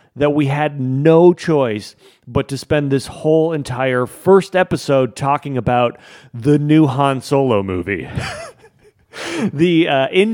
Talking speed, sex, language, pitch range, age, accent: 135 wpm, male, English, 125-165 Hz, 40-59, American